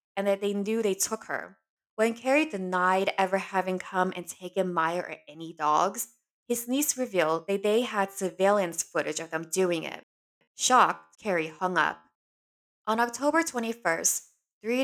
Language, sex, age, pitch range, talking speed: English, female, 20-39, 165-210 Hz, 160 wpm